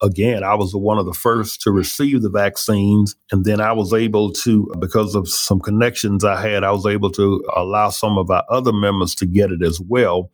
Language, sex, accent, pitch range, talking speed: English, male, American, 100-120 Hz, 220 wpm